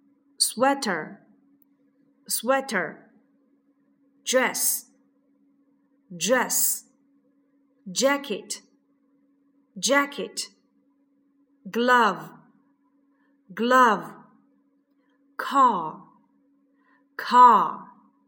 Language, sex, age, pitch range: Chinese, female, 40-59, 250-280 Hz